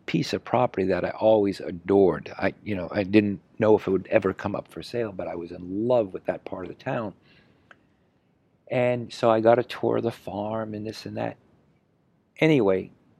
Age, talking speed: 50-69, 210 wpm